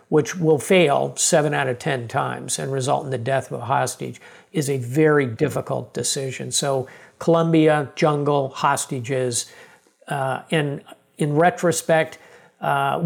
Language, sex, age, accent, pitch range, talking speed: English, male, 50-69, American, 135-160 Hz, 140 wpm